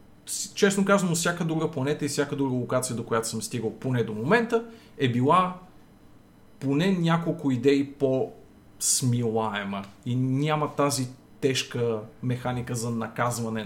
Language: Bulgarian